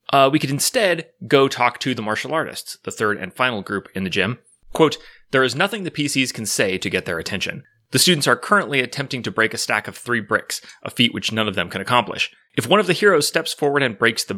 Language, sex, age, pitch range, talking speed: English, male, 30-49, 105-135 Hz, 250 wpm